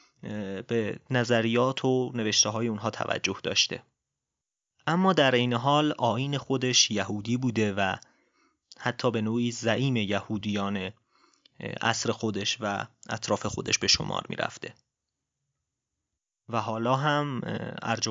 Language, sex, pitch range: Persian, male, 110-135 Hz